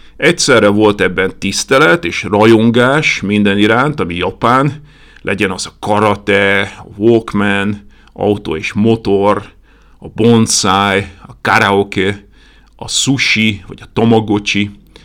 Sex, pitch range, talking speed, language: male, 95-125 Hz, 110 wpm, Hungarian